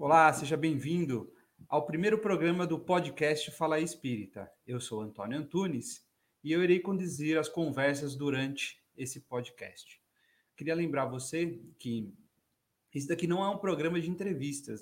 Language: Polish